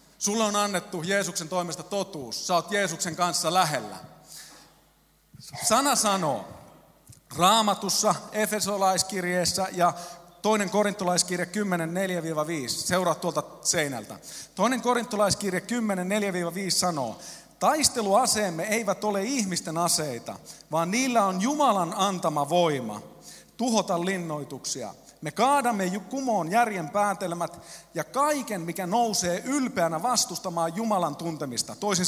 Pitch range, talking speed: 170-235 Hz, 100 wpm